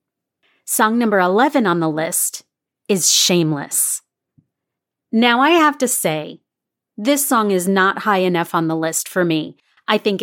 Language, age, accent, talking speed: English, 30-49, American, 155 wpm